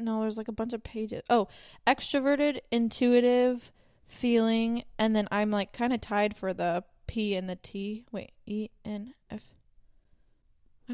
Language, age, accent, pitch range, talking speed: English, 20-39, American, 195-235 Hz, 160 wpm